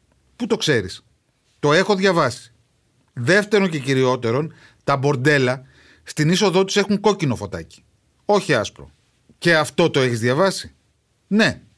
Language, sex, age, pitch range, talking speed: Greek, male, 30-49, 115-165 Hz, 125 wpm